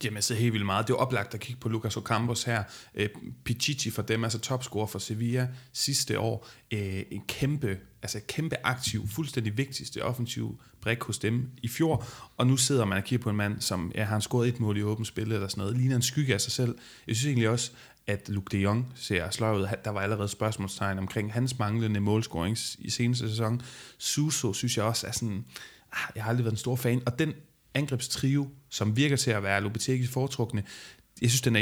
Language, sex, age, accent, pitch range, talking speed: Danish, male, 30-49, native, 105-125 Hz, 220 wpm